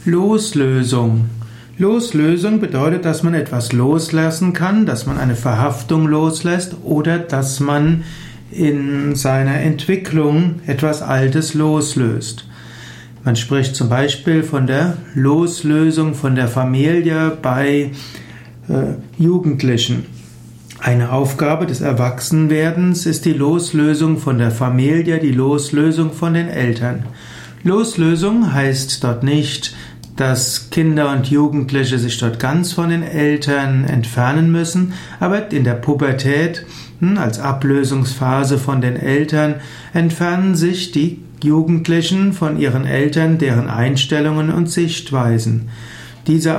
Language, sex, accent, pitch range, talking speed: German, male, German, 130-165 Hz, 110 wpm